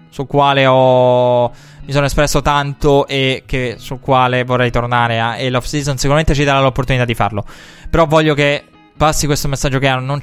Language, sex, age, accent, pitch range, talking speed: Italian, male, 20-39, native, 130-150 Hz, 180 wpm